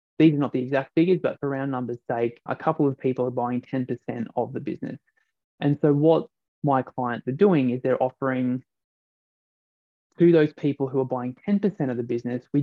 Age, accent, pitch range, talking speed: 20-39, Australian, 125-155 Hz, 200 wpm